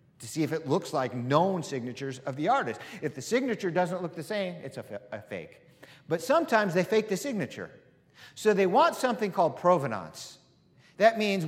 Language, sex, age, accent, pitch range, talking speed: English, male, 50-69, American, 140-205 Hz, 190 wpm